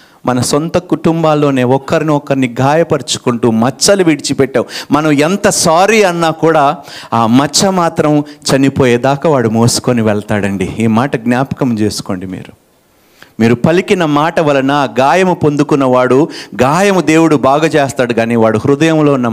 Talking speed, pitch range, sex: 125 wpm, 120-165 Hz, male